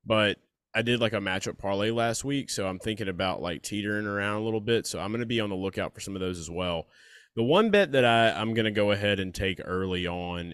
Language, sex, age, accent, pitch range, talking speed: English, male, 20-39, American, 95-120 Hz, 270 wpm